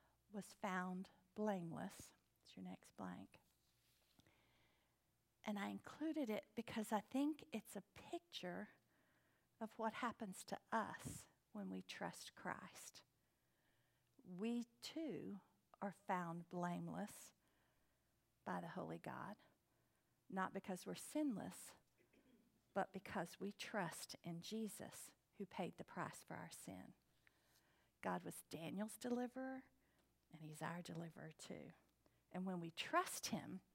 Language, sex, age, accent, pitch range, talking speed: English, female, 50-69, American, 175-225 Hz, 115 wpm